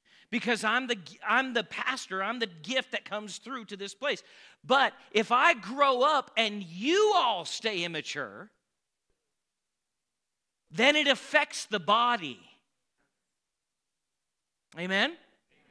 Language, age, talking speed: English, 40-59, 115 wpm